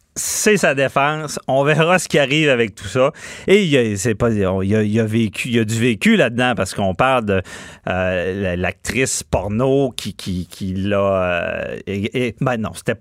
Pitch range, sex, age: 105-140 Hz, male, 40-59